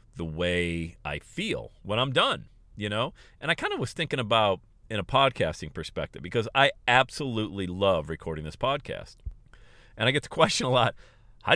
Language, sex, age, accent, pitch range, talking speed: English, male, 40-59, American, 100-135 Hz, 180 wpm